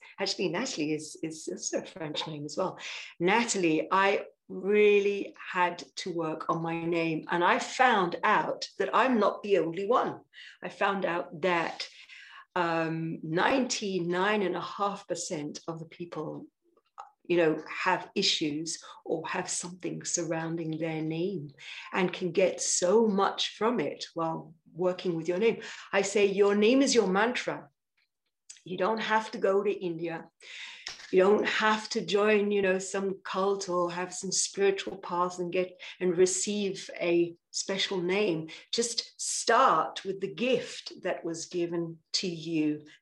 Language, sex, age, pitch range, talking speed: English, female, 50-69, 170-205 Hz, 145 wpm